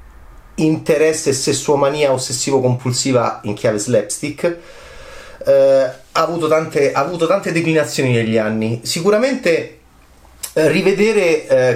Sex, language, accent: male, Italian, native